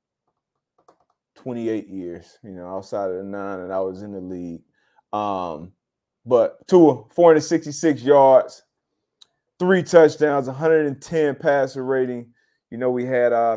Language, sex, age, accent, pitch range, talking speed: English, male, 30-49, American, 105-145 Hz, 130 wpm